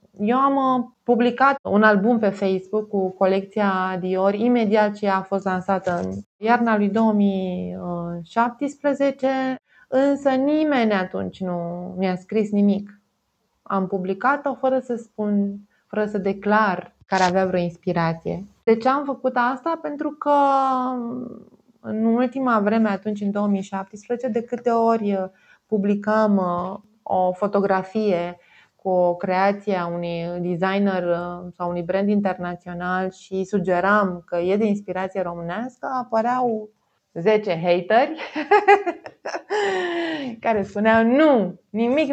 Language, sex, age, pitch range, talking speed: Romanian, female, 20-39, 190-245 Hz, 115 wpm